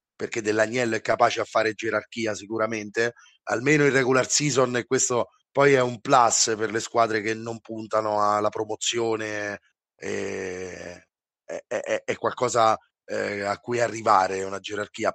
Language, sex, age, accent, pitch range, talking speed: Italian, male, 30-49, native, 110-135 Hz, 130 wpm